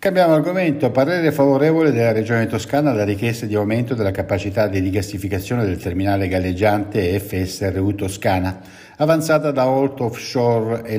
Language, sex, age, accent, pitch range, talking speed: Italian, male, 60-79, native, 100-140 Hz, 130 wpm